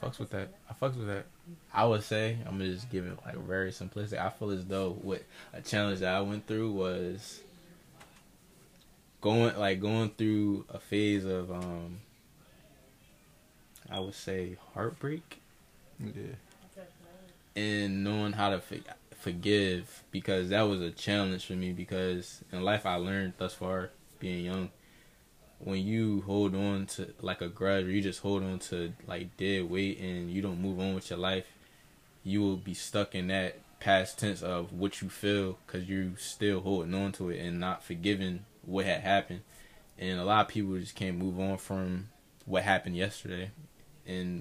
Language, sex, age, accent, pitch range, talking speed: English, male, 20-39, American, 90-105 Hz, 175 wpm